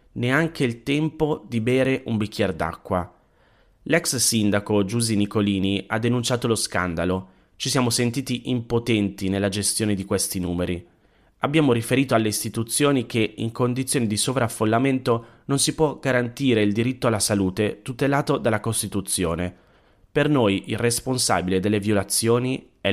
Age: 30-49